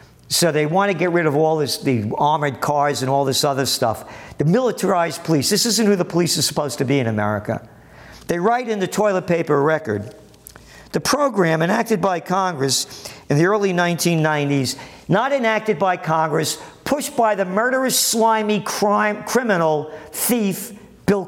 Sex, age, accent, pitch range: male, 50-69, American, 145-205 Hz